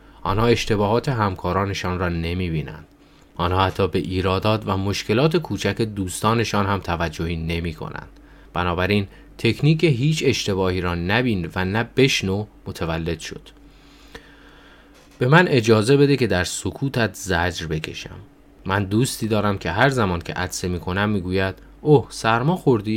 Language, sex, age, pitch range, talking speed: Persian, male, 30-49, 90-120 Hz, 130 wpm